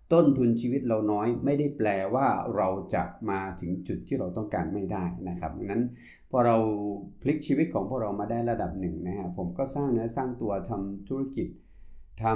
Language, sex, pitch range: Thai, male, 90-120 Hz